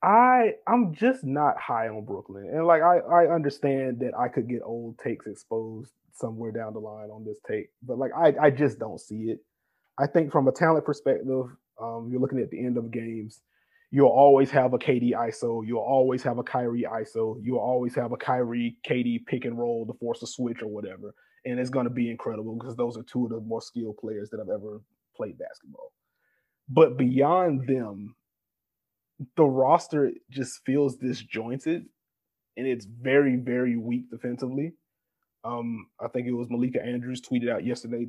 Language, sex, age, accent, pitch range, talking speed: English, male, 30-49, American, 115-140 Hz, 185 wpm